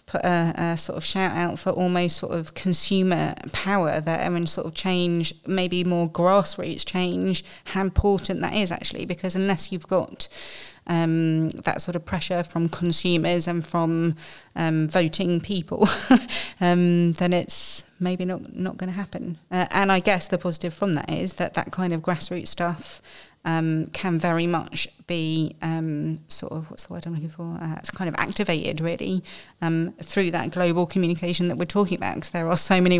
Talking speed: 185 wpm